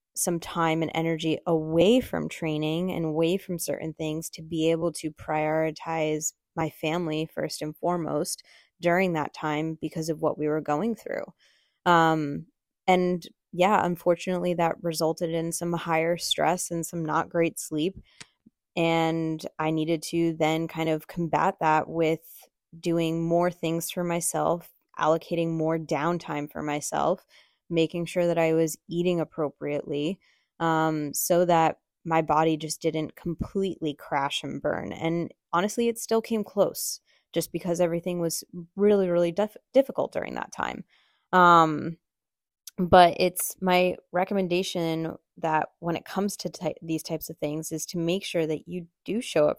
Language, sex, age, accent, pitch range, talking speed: English, female, 20-39, American, 155-175 Hz, 150 wpm